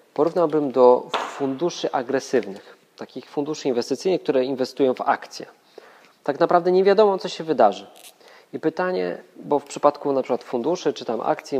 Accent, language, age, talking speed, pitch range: native, Polish, 20-39, 150 wpm, 125-150 Hz